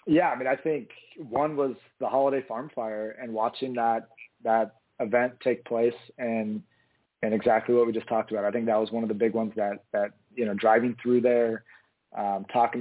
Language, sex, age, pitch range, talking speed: English, male, 20-39, 110-130 Hz, 205 wpm